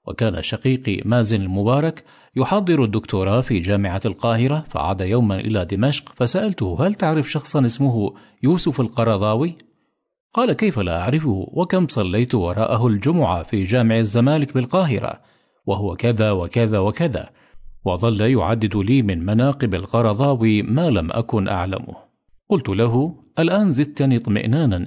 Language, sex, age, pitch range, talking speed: English, male, 50-69, 105-130 Hz, 125 wpm